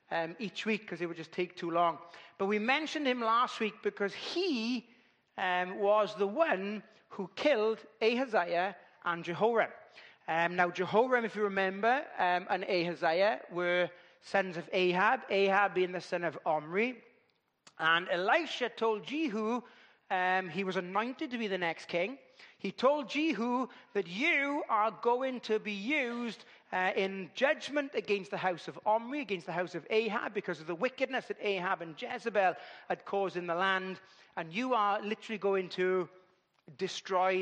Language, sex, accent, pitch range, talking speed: English, male, British, 180-235 Hz, 165 wpm